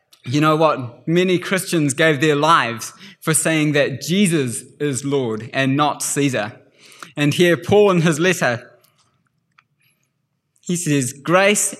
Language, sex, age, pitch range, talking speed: English, male, 20-39, 130-170 Hz, 130 wpm